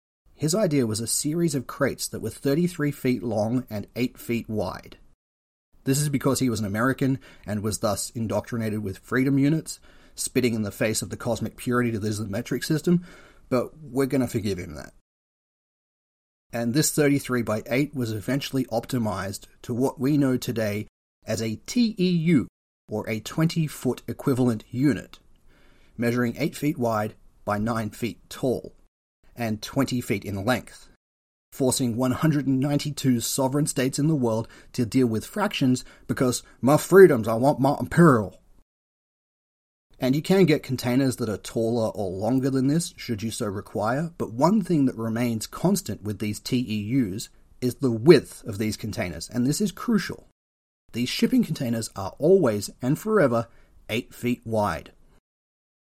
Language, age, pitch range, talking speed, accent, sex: English, 30-49, 110-140 Hz, 160 wpm, Australian, male